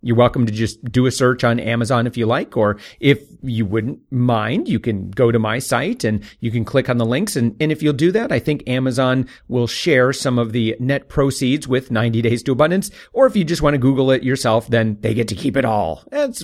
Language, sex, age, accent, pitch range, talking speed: English, male, 40-59, American, 115-145 Hz, 250 wpm